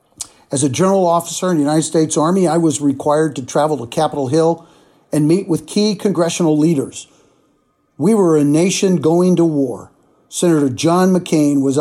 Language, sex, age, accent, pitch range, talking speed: English, male, 50-69, American, 145-175 Hz, 175 wpm